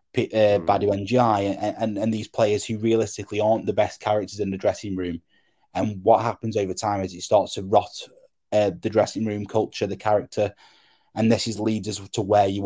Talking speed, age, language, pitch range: 205 wpm, 10-29, English, 95-110 Hz